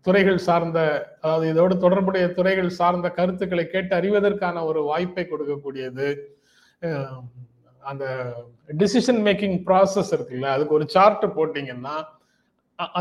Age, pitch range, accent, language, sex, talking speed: 30-49, 140-190 Hz, native, Tamil, male, 100 wpm